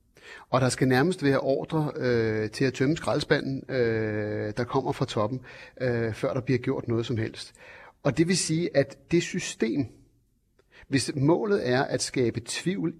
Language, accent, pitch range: Danish, native, 120-155 Hz